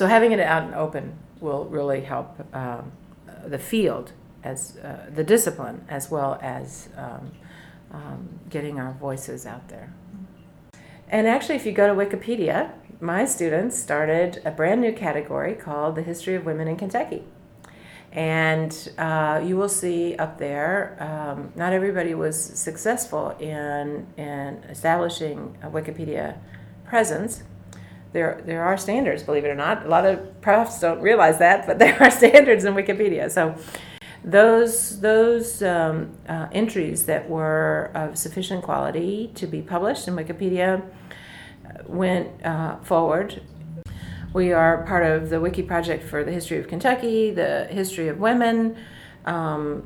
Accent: American